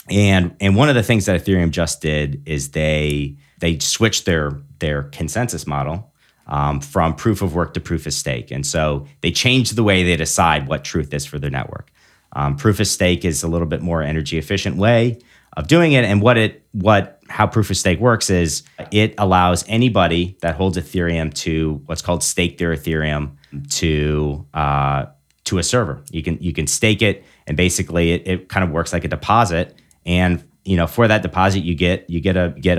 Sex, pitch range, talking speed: male, 80-95 Hz, 190 wpm